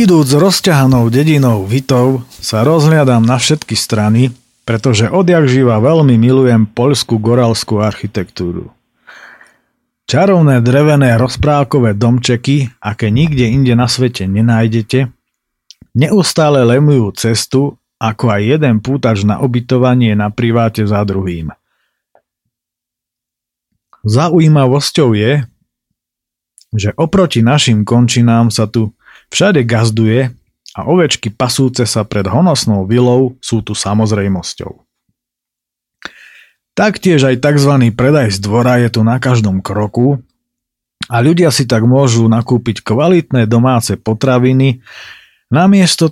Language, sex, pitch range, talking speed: Slovak, male, 110-135 Hz, 105 wpm